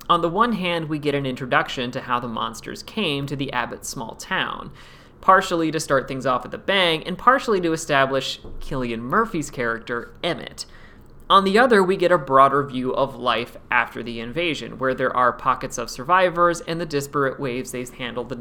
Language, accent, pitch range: English, American, 130-170 Hz